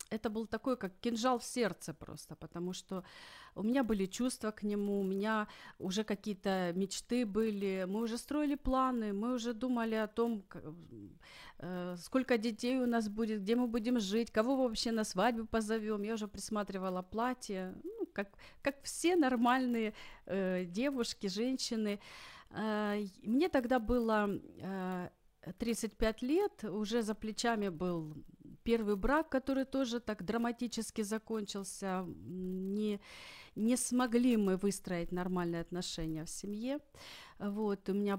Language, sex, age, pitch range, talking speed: Ukrainian, female, 40-59, 190-240 Hz, 135 wpm